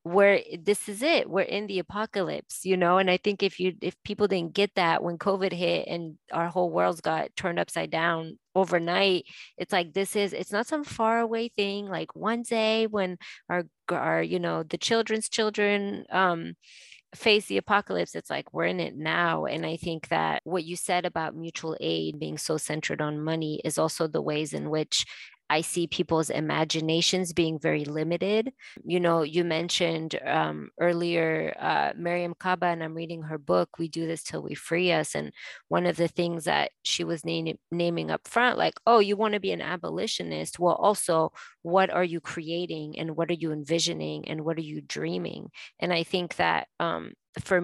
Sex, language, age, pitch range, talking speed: female, English, 20-39, 160-190 Hz, 195 wpm